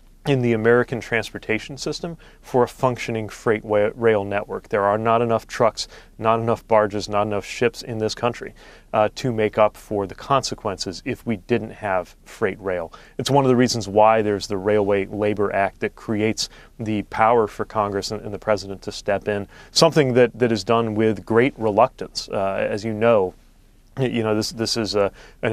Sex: male